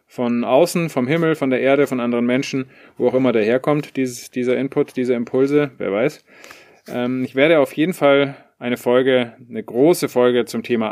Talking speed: 180 wpm